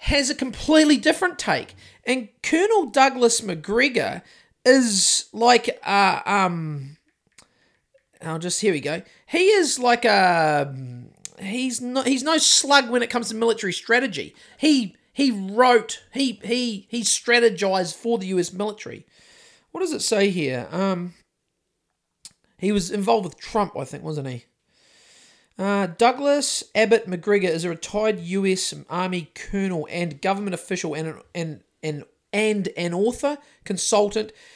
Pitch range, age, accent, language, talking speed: 160-230 Hz, 40-59, Australian, English, 135 wpm